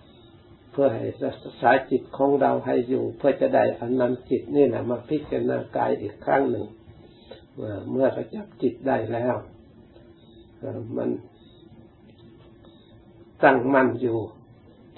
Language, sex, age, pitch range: Thai, male, 60-79, 110-130 Hz